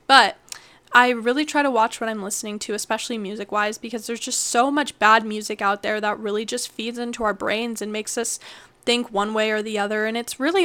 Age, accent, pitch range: 10-29, American, 215-260 Hz